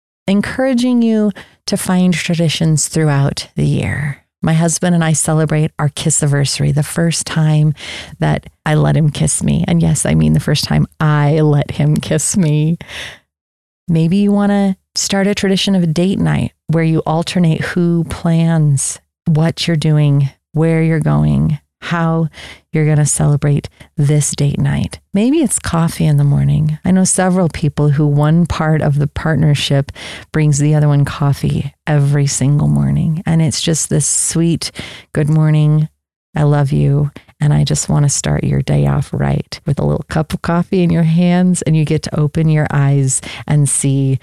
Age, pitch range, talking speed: 30-49, 140-165 Hz, 175 wpm